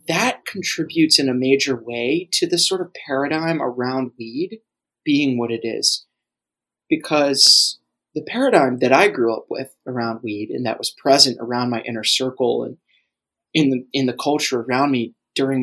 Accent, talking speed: American, 170 wpm